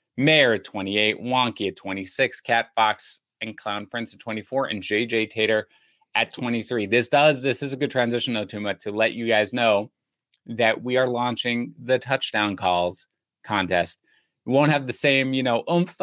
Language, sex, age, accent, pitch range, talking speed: English, male, 30-49, American, 105-125 Hz, 175 wpm